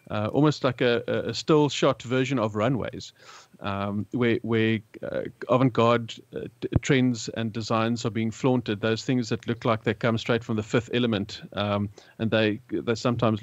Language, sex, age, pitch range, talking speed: English, male, 30-49, 105-120 Hz, 180 wpm